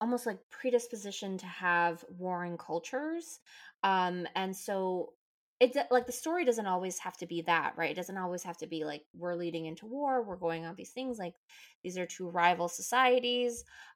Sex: female